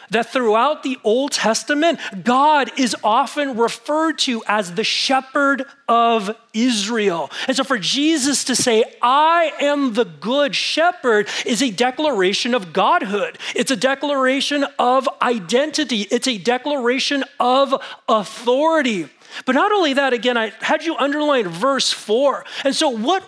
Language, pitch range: English, 225-285 Hz